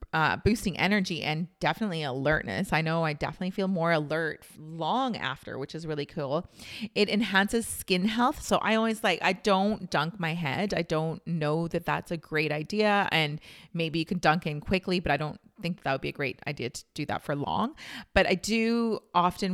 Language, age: English, 30-49